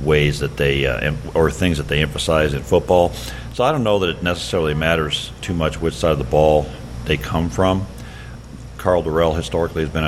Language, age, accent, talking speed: English, 50-69, American, 200 wpm